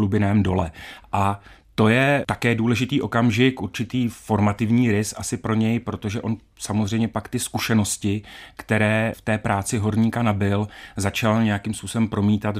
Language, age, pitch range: Czech, 30-49, 105-120 Hz